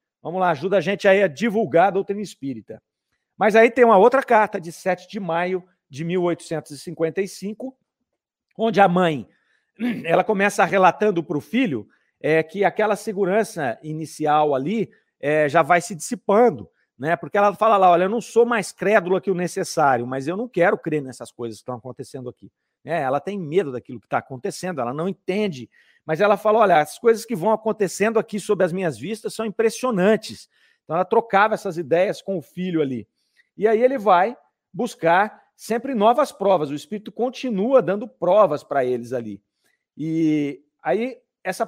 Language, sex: Portuguese, male